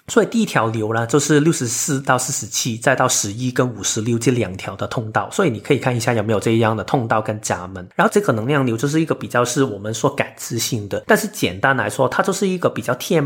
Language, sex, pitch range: Chinese, male, 110-150 Hz